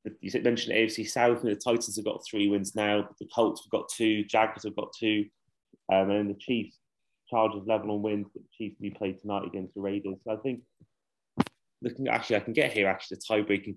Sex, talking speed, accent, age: male, 230 wpm, British, 30-49